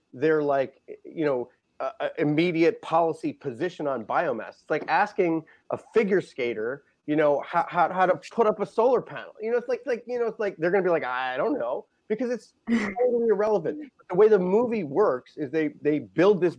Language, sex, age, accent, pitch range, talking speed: English, male, 30-49, American, 145-220 Hz, 210 wpm